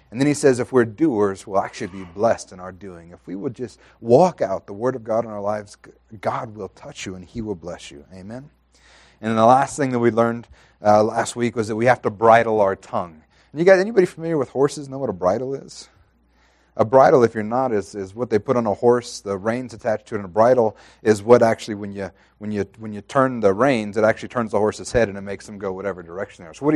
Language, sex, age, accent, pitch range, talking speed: English, male, 30-49, American, 105-135 Hz, 265 wpm